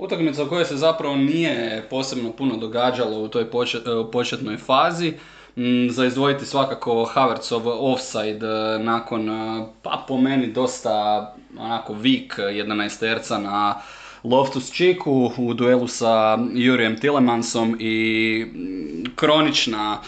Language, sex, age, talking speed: Croatian, male, 20-39, 110 wpm